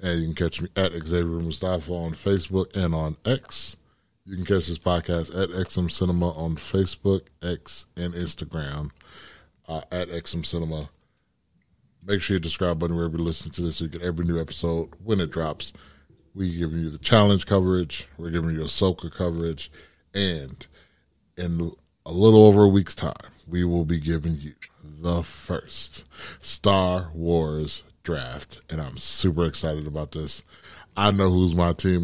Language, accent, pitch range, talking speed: English, American, 80-95 Hz, 165 wpm